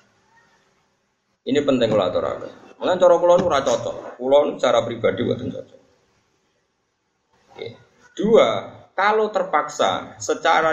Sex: male